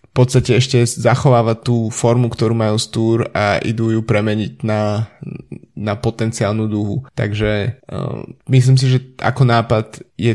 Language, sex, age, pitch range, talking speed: Slovak, male, 20-39, 110-125 Hz, 145 wpm